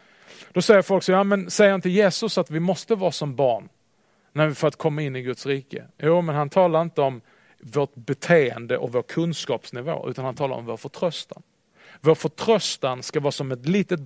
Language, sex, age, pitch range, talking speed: Swedish, male, 40-59, 135-175 Hz, 205 wpm